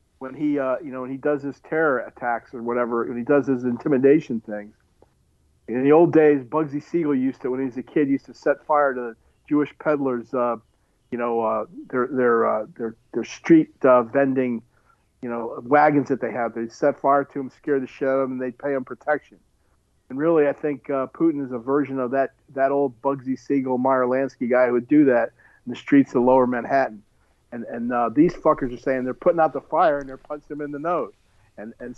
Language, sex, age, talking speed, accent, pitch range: English, male, 50-69, 230 wpm, American, 120-150 Hz